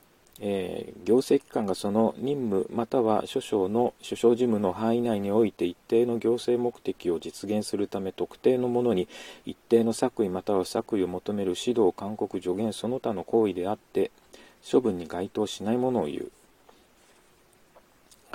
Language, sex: Japanese, male